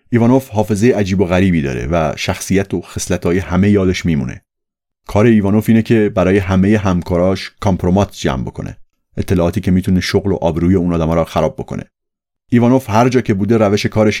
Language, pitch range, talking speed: Persian, 90-115 Hz, 175 wpm